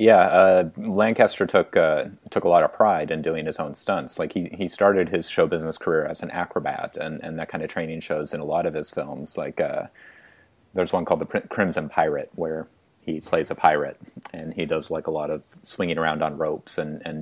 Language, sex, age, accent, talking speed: English, male, 30-49, American, 230 wpm